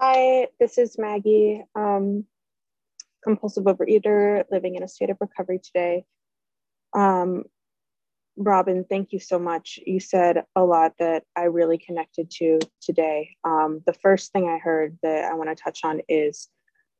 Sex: female